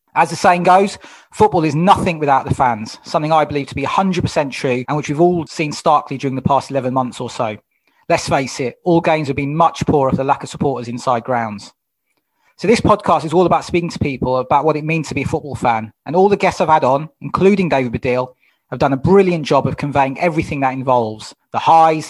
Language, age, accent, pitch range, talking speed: English, 30-49, British, 135-175 Hz, 235 wpm